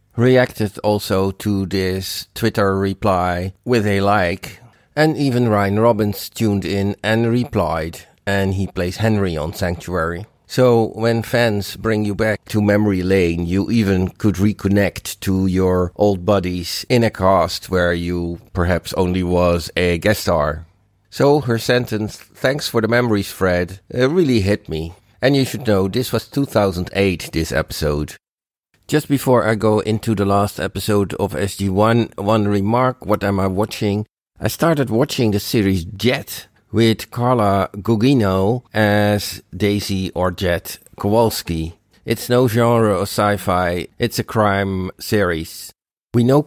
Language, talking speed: English, 145 wpm